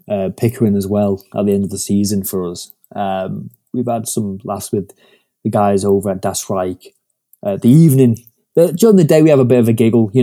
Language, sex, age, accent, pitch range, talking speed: English, male, 20-39, British, 105-130 Hz, 225 wpm